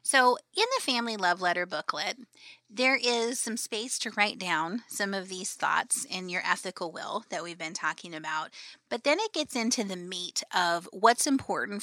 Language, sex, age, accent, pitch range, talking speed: English, female, 30-49, American, 180-230 Hz, 190 wpm